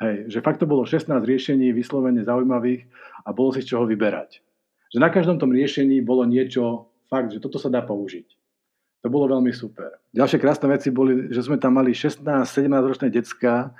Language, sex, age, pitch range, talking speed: Slovak, male, 50-69, 120-140 Hz, 185 wpm